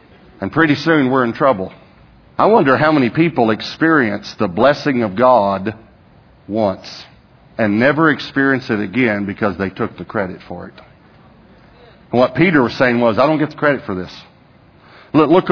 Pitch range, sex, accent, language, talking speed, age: 140-180 Hz, male, American, English, 165 wpm, 50-69